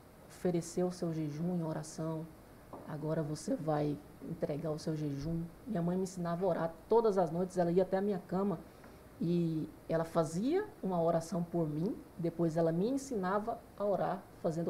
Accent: Brazilian